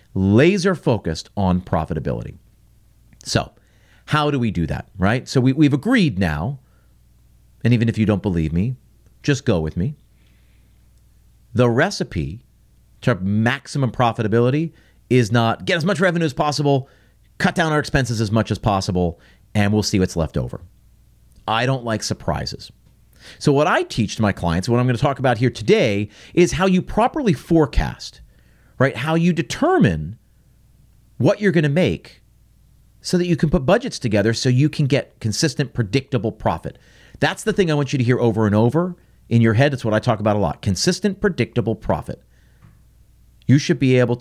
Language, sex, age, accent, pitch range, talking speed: English, male, 40-59, American, 95-140 Hz, 170 wpm